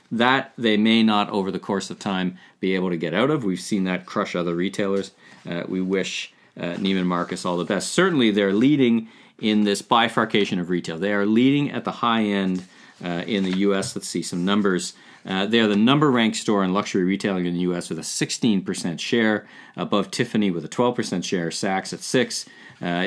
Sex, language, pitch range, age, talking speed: male, English, 90-110 Hz, 40-59, 205 wpm